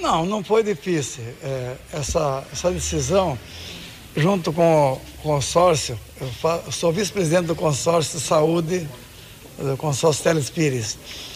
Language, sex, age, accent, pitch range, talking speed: Portuguese, male, 60-79, Brazilian, 140-185 Hz, 105 wpm